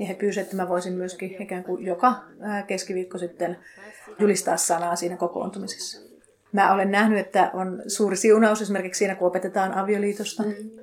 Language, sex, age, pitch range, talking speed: Finnish, female, 30-49, 185-210 Hz, 145 wpm